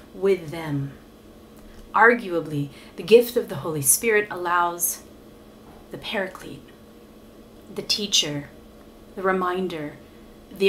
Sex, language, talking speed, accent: female, English, 95 wpm, American